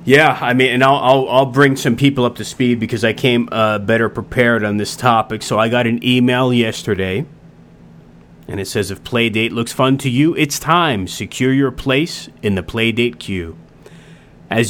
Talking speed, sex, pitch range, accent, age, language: 190 wpm, male, 105-130 Hz, American, 30-49, English